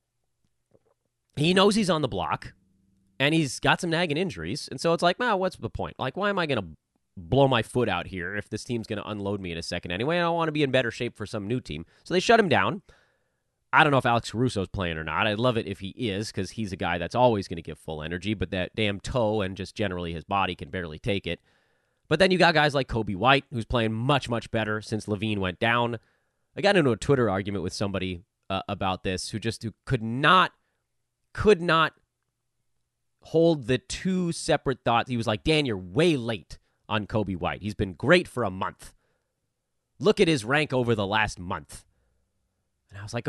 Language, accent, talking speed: English, American, 230 wpm